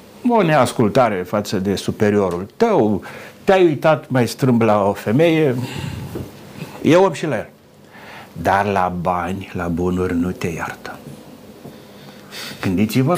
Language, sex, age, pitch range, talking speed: Romanian, male, 60-79, 105-140 Hz, 125 wpm